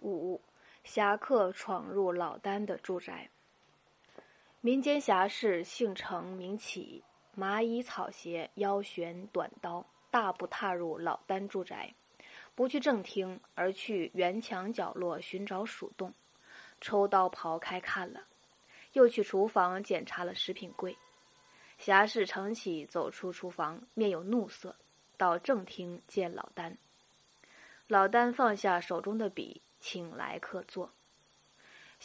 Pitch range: 180-240 Hz